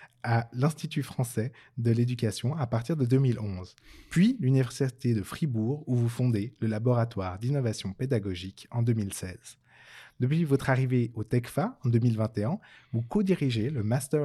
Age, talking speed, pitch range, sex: 20-39, 140 wpm, 110-140 Hz, male